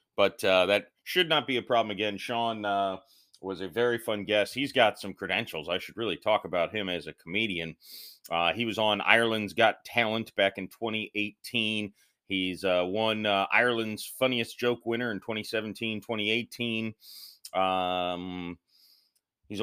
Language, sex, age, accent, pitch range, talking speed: English, male, 30-49, American, 95-115 Hz, 155 wpm